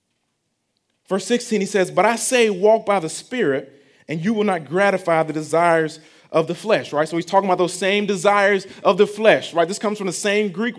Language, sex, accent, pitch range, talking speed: English, male, American, 170-215 Hz, 215 wpm